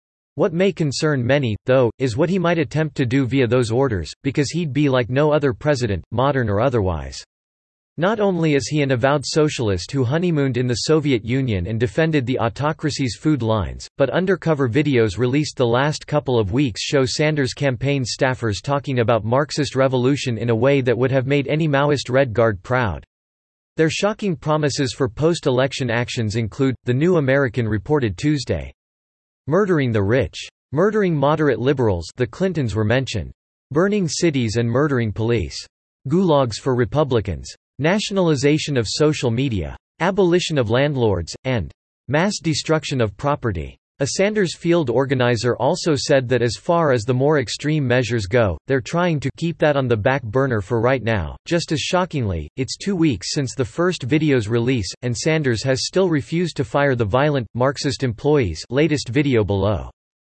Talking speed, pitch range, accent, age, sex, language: 165 wpm, 115-150 Hz, American, 40-59, male, English